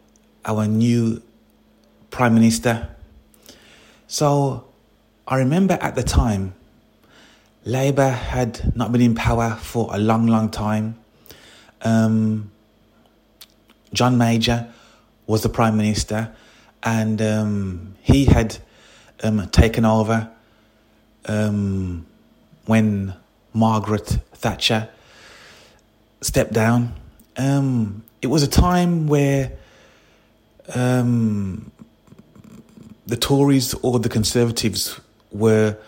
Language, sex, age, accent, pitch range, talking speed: English, male, 30-49, British, 110-125 Hz, 90 wpm